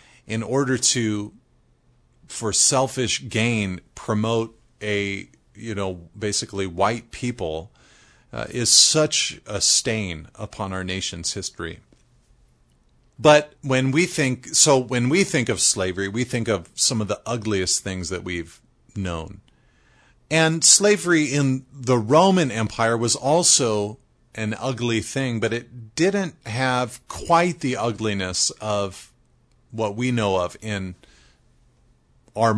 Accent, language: American, English